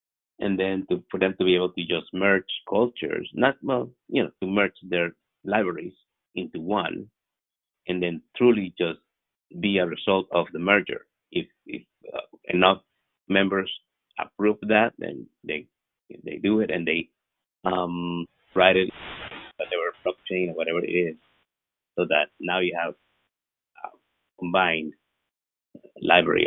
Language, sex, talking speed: English, male, 145 wpm